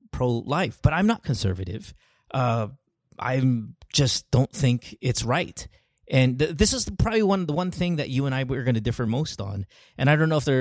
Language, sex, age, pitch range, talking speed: English, male, 30-49, 120-155 Hz, 210 wpm